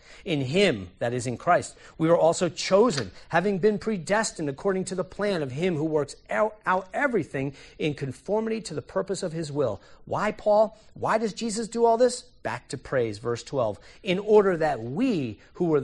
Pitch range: 130-205 Hz